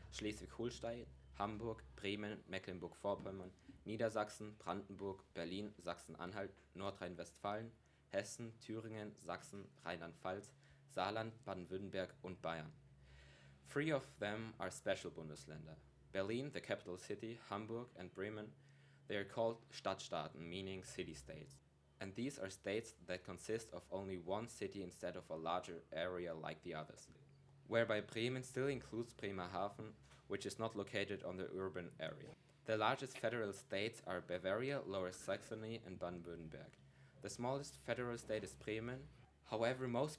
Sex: male